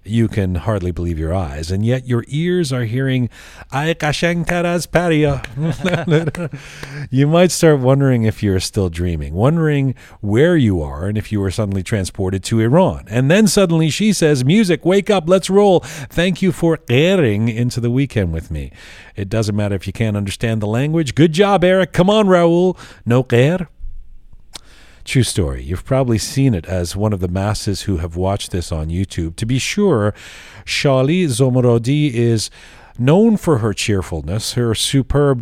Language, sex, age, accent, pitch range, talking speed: English, male, 40-59, American, 100-145 Hz, 165 wpm